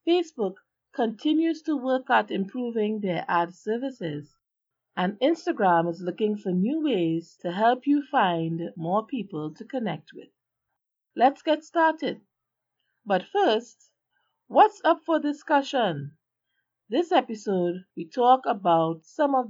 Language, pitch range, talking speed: English, 165-260 Hz, 125 wpm